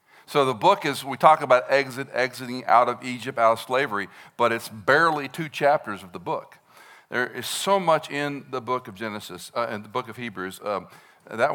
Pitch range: 115-145 Hz